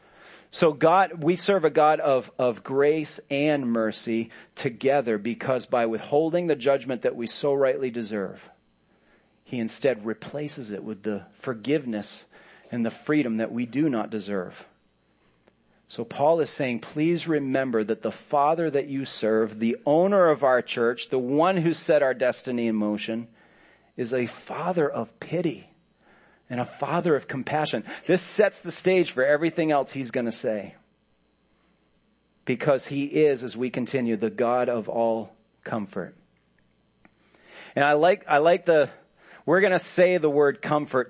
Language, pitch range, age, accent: English, 115-155 Hz, 40-59, American